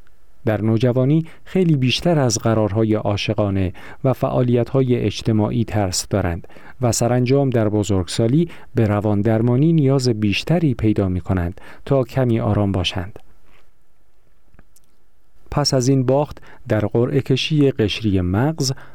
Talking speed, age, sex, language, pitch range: 115 wpm, 40-59, male, Persian, 105-145 Hz